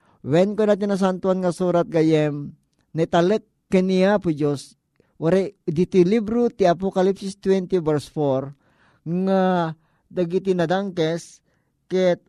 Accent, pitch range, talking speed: native, 160-195 Hz, 110 wpm